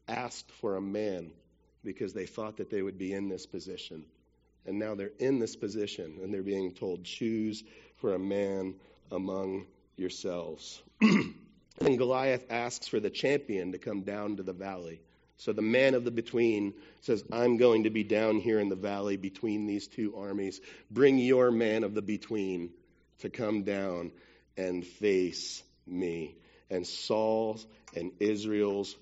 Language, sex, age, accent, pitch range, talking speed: English, male, 40-59, American, 95-125 Hz, 160 wpm